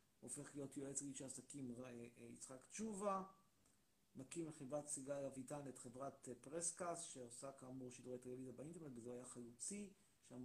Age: 50-69